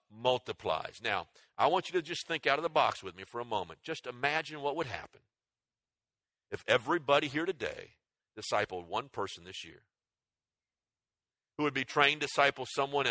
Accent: American